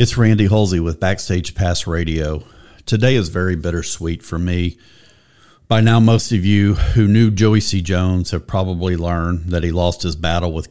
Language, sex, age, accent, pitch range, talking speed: English, male, 50-69, American, 85-105 Hz, 180 wpm